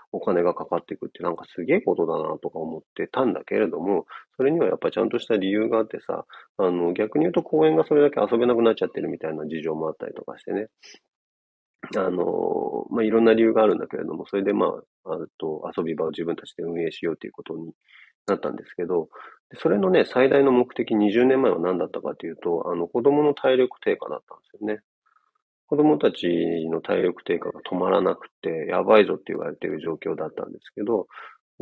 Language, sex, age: Japanese, male, 40-59